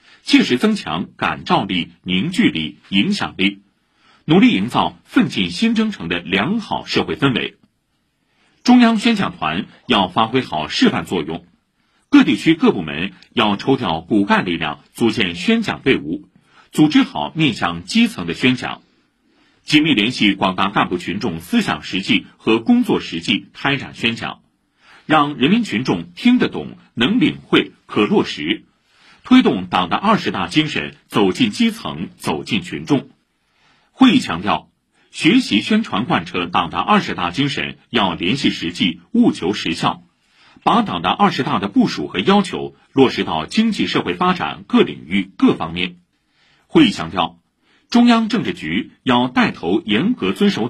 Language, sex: Chinese, male